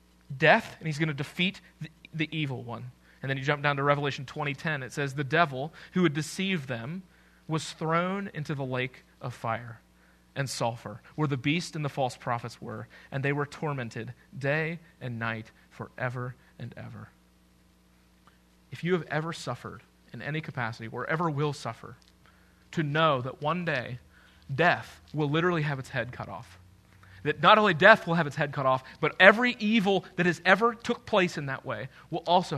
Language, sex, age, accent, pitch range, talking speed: English, male, 30-49, American, 120-165 Hz, 185 wpm